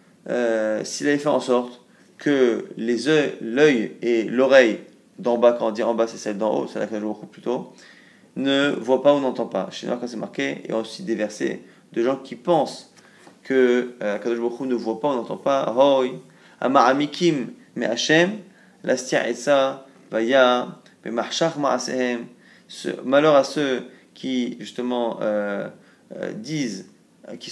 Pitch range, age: 120-150 Hz, 30-49